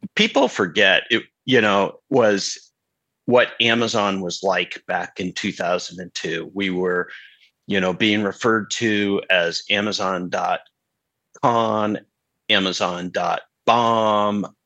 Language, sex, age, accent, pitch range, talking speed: English, male, 40-59, American, 100-125 Hz, 95 wpm